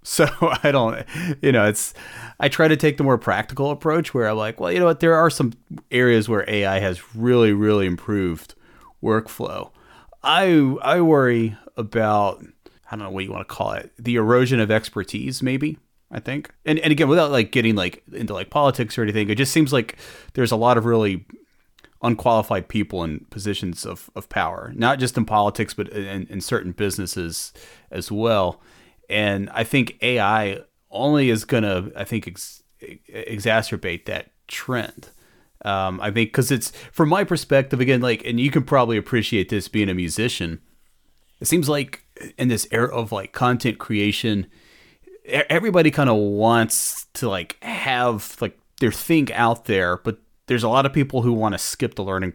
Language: English